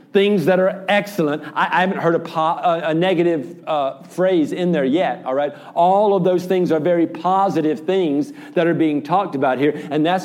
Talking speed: 195 wpm